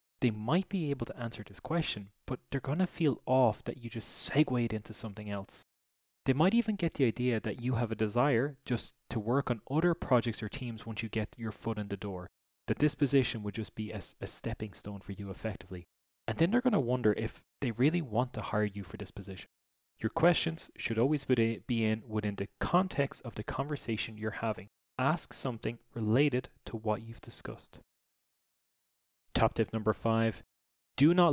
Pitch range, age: 110-140 Hz, 20-39